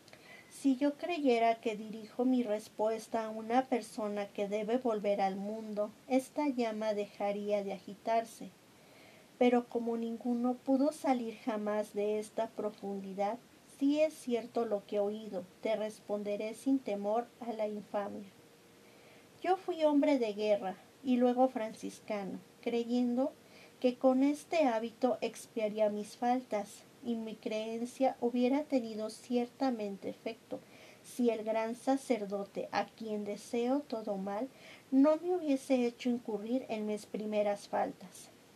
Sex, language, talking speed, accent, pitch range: female, Spanish, 130 wpm, American, 210-260 Hz